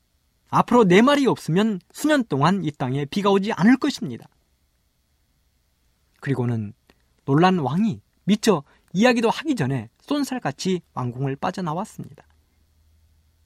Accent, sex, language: native, male, Korean